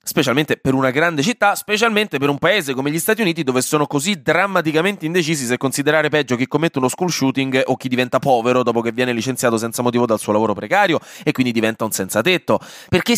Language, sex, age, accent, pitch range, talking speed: Italian, male, 20-39, native, 120-170 Hz, 215 wpm